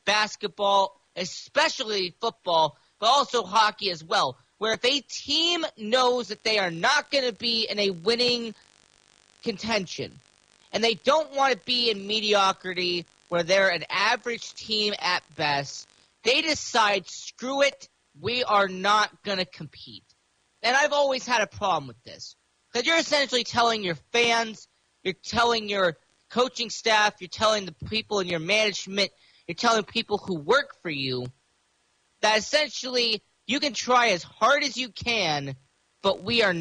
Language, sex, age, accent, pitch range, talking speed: English, male, 40-59, American, 185-245 Hz, 155 wpm